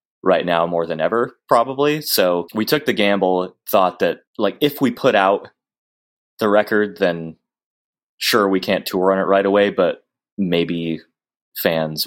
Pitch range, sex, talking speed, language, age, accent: 85-105 Hz, male, 160 wpm, English, 20-39, American